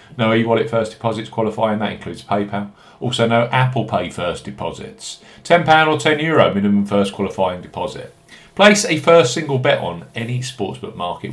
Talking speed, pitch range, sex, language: 160 wpm, 105-130 Hz, male, English